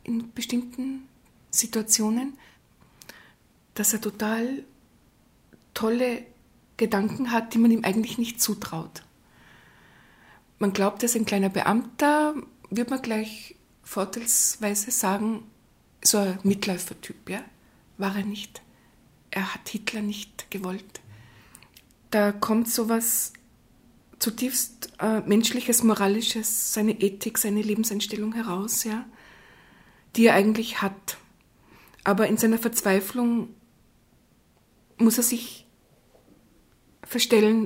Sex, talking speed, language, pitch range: female, 100 wpm, German, 210-235 Hz